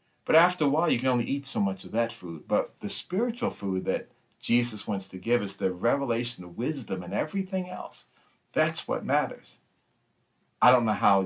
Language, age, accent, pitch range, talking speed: English, 50-69, American, 105-130 Hz, 195 wpm